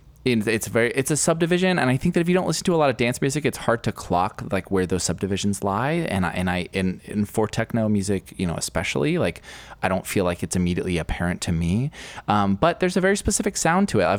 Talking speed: 245 wpm